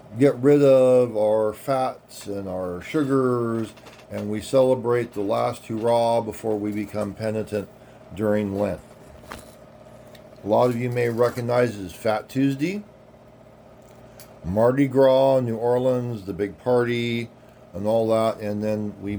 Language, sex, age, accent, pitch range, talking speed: English, male, 40-59, American, 105-125 Hz, 140 wpm